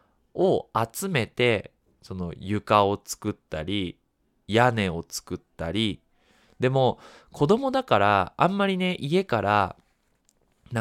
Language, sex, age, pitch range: Japanese, male, 20-39, 100-155 Hz